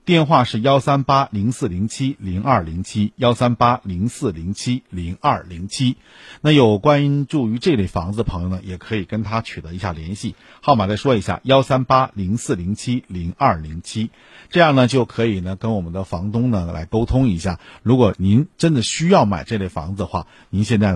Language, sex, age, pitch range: Chinese, male, 50-69, 90-125 Hz